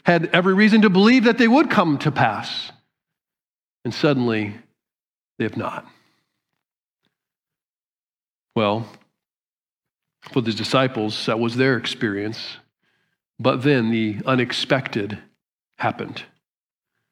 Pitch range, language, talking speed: 125-180 Hz, English, 100 wpm